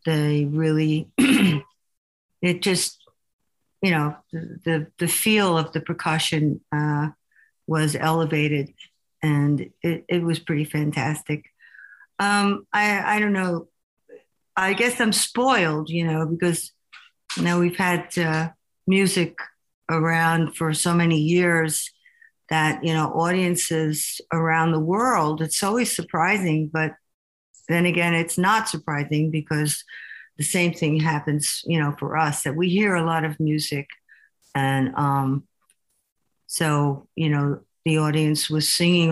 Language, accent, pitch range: English, American, 155-180 Hz